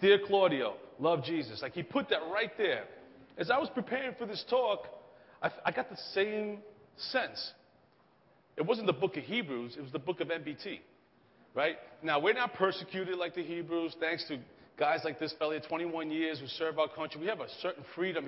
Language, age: English, 40-59